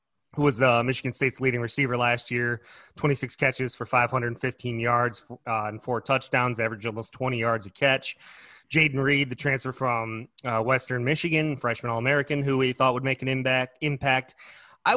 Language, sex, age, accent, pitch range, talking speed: English, male, 30-49, American, 120-140 Hz, 175 wpm